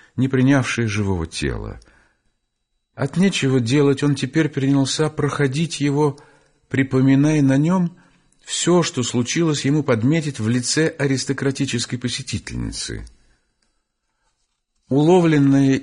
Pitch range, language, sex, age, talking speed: 105-140 Hz, Russian, male, 50-69, 95 wpm